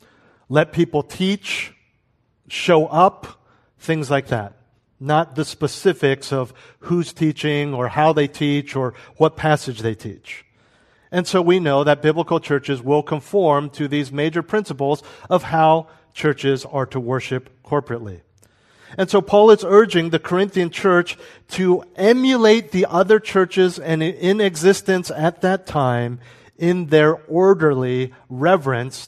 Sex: male